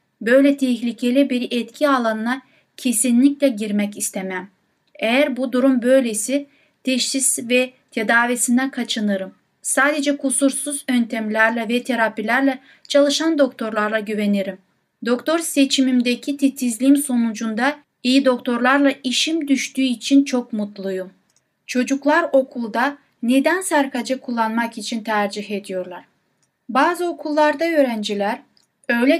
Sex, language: female, Turkish